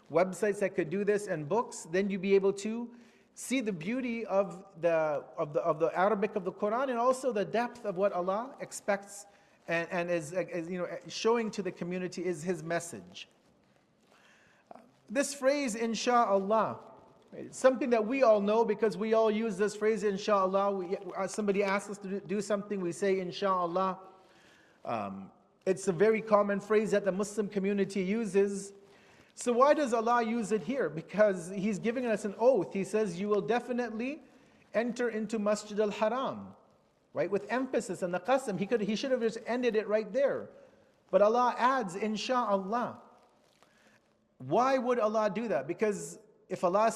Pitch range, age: 190-230 Hz, 40-59